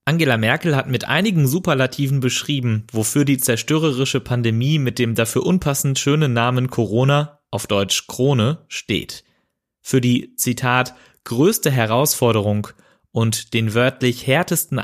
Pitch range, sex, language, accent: 115-145 Hz, male, German, German